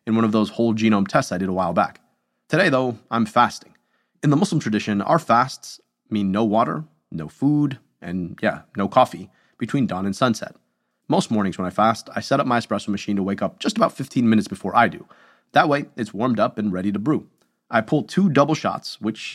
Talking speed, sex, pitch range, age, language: 220 wpm, male, 100-125 Hz, 30-49, English